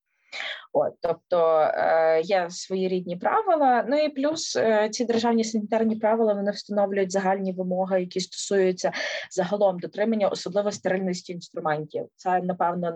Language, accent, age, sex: Ukrainian, native, 20-39, female